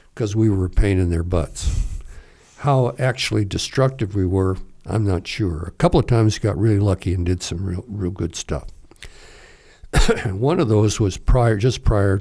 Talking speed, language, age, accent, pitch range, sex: 185 wpm, English, 60-79, American, 95-115 Hz, male